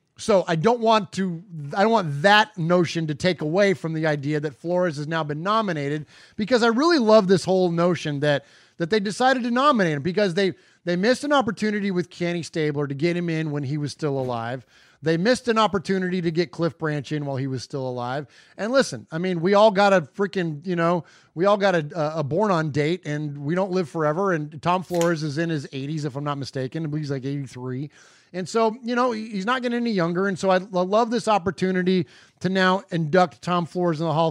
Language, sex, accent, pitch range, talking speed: English, male, American, 155-210 Hz, 230 wpm